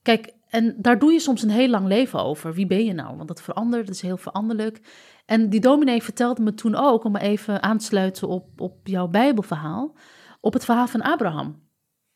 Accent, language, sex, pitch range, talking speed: Dutch, Dutch, female, 195-240 Hz, 210 wpm